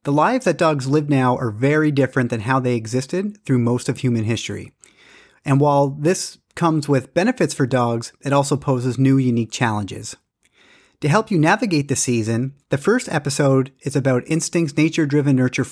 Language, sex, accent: English, male, American